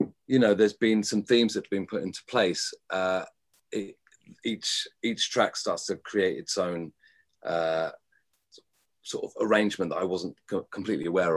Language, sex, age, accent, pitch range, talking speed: English, male, 30-49, British, 95-130 Hz, 160 wpm